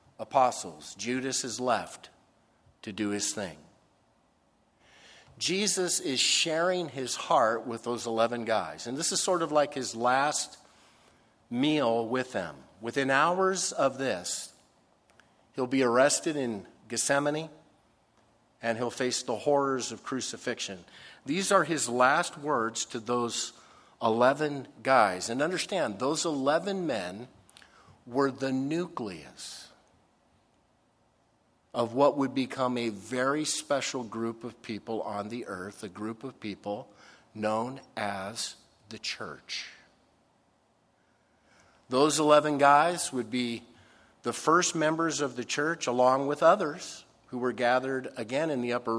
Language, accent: English, American